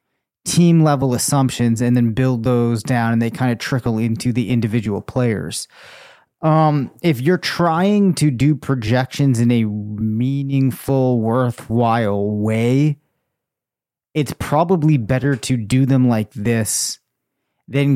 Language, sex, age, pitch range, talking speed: English, male, 30-49, 115-135 Hz, 125 wpm